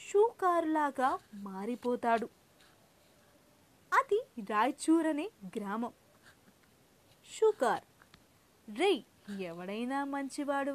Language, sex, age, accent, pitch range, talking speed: Telugu, female, 20-39, native, 225-330 Hz, 60 wpm